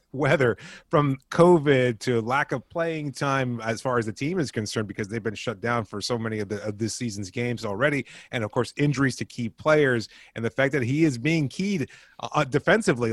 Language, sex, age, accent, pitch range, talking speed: English, male, 30-49, American, 115-140 Hz, 215 wpm